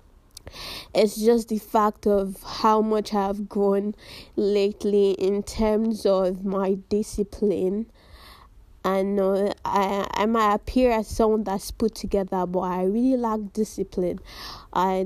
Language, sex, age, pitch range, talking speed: English, female, 20-39, 190-220 Hz, 130 wpm